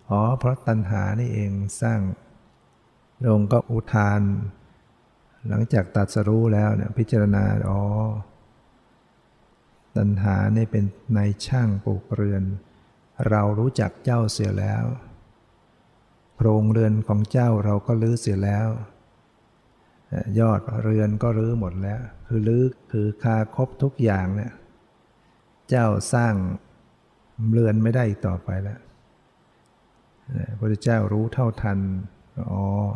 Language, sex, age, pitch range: Thai, male, 60-79, 100-115 Hz